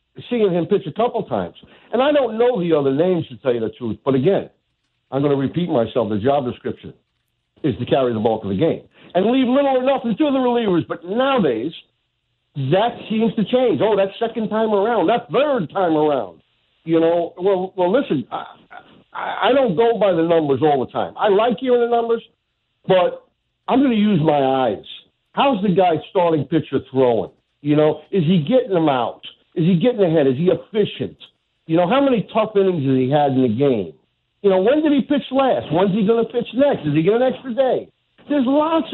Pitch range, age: 140-230 Hz, 60-79